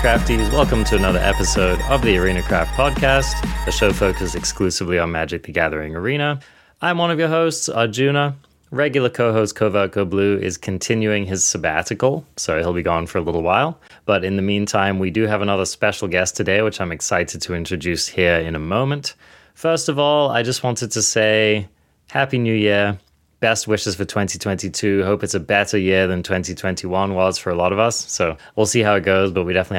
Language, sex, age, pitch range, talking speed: English, male, 20-39, 90-115 Hz, 195 wpm